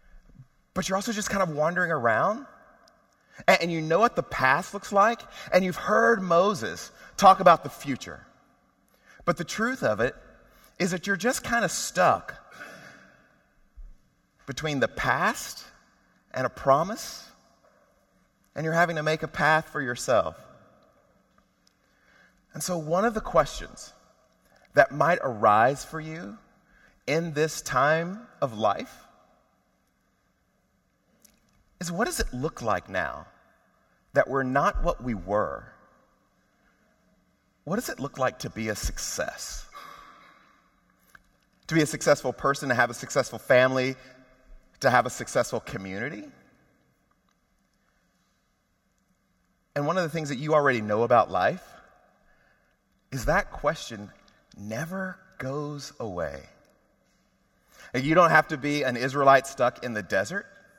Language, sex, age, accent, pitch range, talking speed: English, male, 30-49, American, 130-185 Hz, 130 wpm